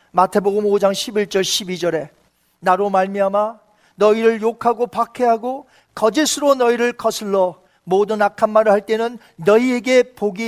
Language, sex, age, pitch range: Korean, male, 40-59, 200-255 Hz